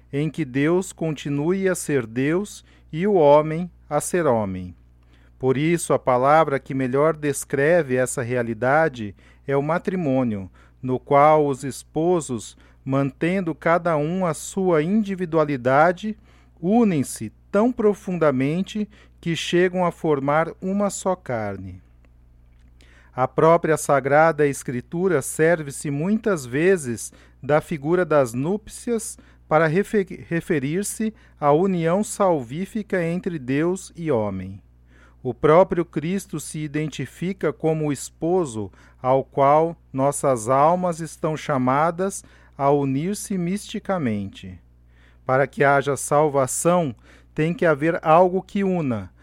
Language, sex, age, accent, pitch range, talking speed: Portuguese, male, 40-59, Brazilian, 125-180 Hz, 110 wpm